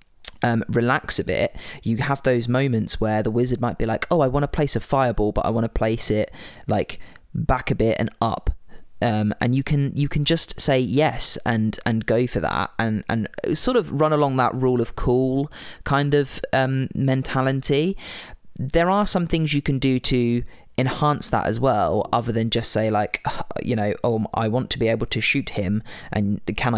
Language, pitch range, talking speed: English, 110-130 Hz, 205 wpm